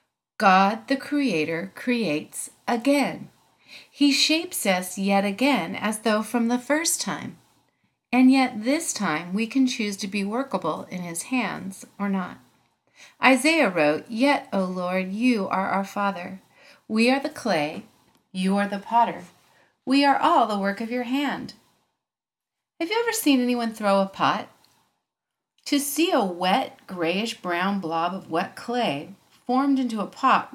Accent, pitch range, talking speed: American, 190-265 Hz, 150 wpm